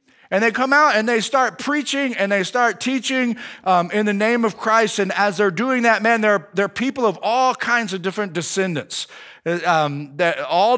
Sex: male